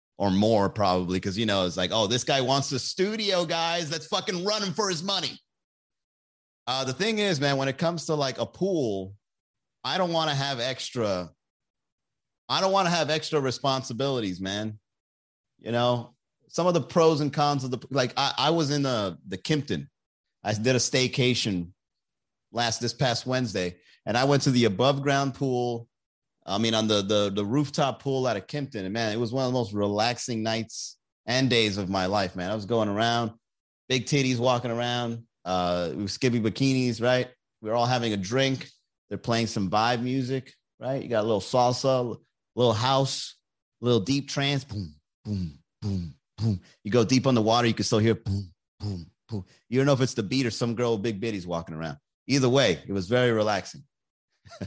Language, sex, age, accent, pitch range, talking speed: English, male, 30-49, American, 105-135 Hz, 200 wpm